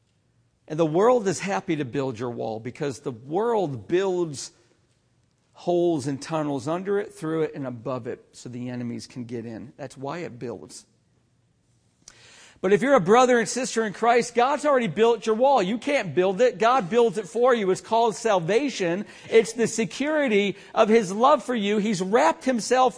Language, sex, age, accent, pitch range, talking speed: English, male, 50-69, American, 175-250 Hz, 185 wpm